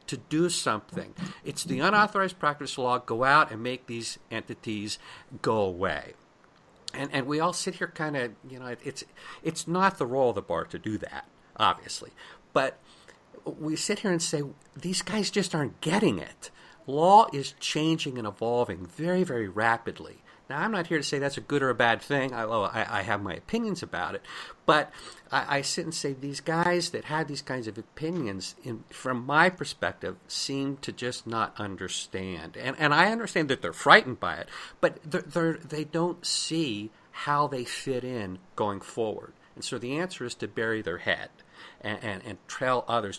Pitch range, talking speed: 115-165 Hz, 185 wpm